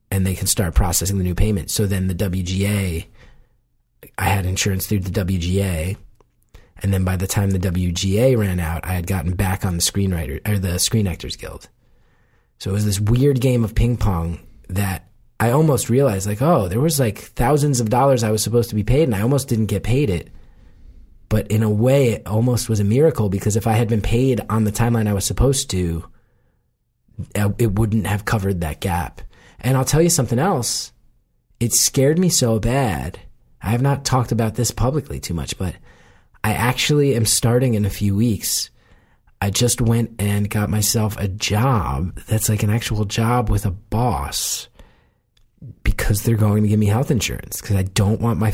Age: 30-49